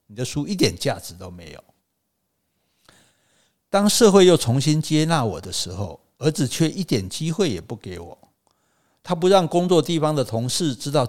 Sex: male